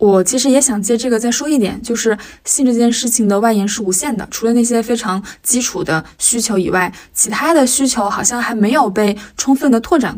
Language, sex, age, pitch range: Chinese, female, 20-39, 200-245 Hz